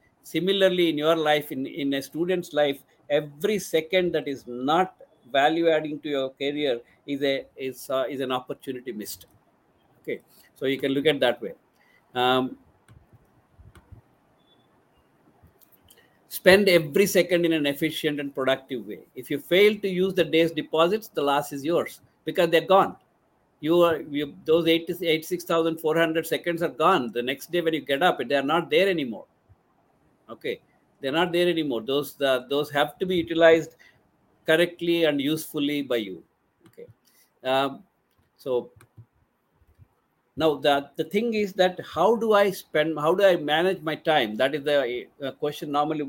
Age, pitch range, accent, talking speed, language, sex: 50-69, 140-170 Hz, Indian, 155 wpm, English, male